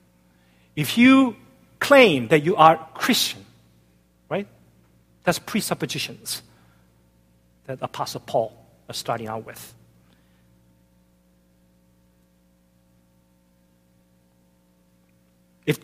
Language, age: Korean, 50-69